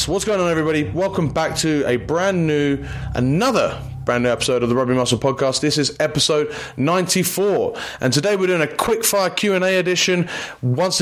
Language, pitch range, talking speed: English, 130-165 Hz, 180 wpm